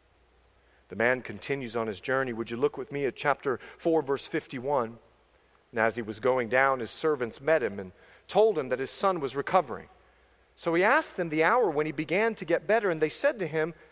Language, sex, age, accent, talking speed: English, male, 40-59, American, 220 wpm